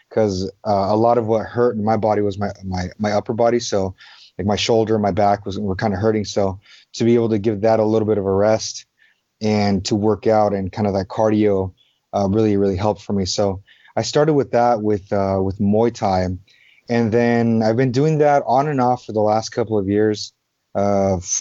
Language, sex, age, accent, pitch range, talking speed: English, male, 30-49, American, 100-115 Hz, 230 wpm